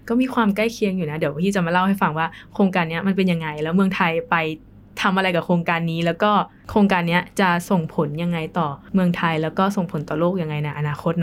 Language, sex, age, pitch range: Thai, female, 20-39, 170-205 Hz